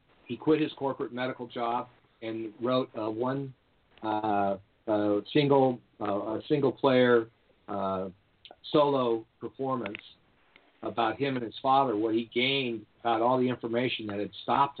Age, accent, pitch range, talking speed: 50-69, American, 110-130 Hz, 140 wpm